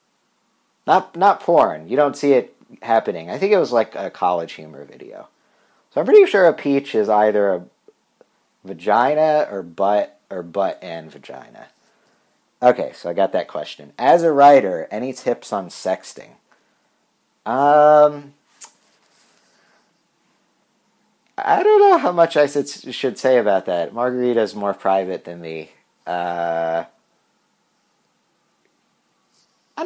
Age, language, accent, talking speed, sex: 50-69, English, American, 130 wpm, male